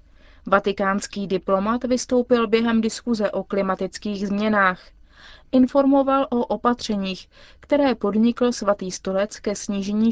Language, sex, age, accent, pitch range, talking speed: Czech, female, 20-39, native, 195-240 Hz, 100 wpm